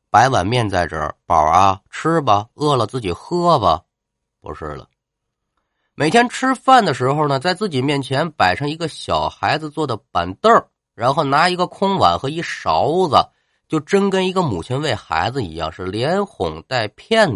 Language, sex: Japanese, male